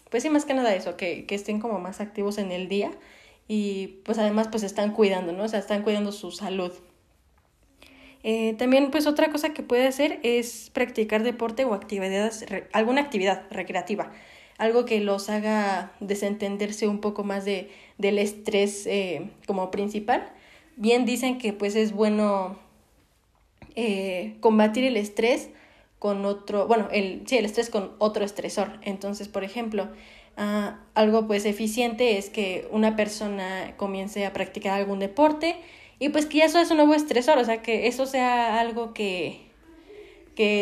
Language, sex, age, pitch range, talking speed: Spanish, female, 20-39, 200-235 Hz, 165 wpm